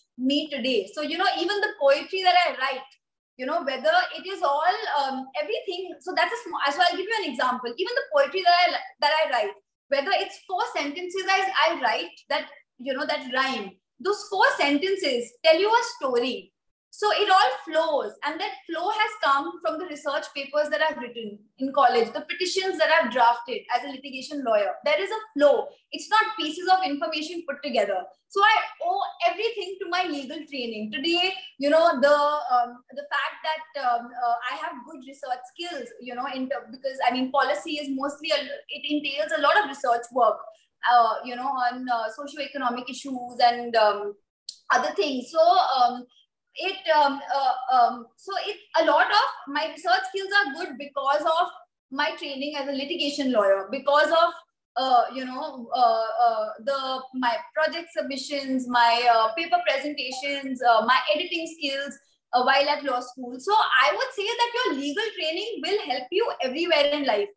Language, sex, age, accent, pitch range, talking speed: English, female, 20-39, Indian, 260-350 Hz, 185 wpm